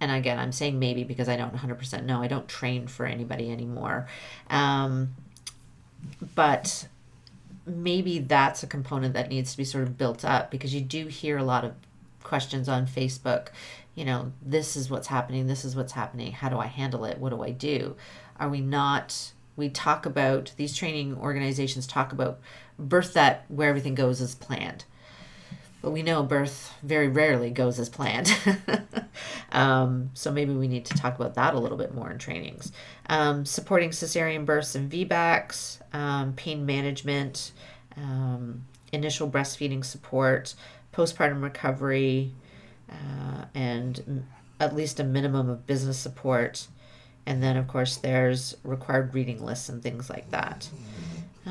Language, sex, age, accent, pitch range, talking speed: English, female, 40-59, American, 125-145 Hz, 160 wpm